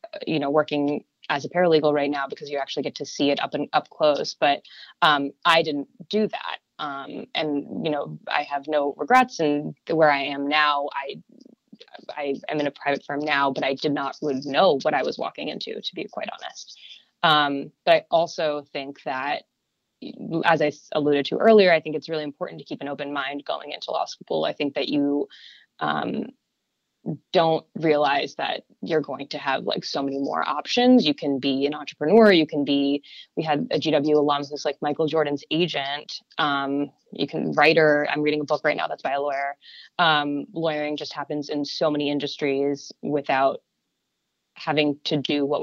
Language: English